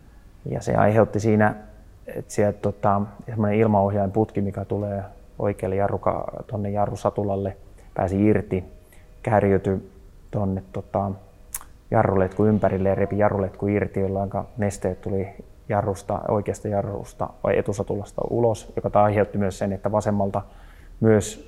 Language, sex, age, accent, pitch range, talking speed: Finnish, male, 20-39, native, 95-105 Hz, 115 wpm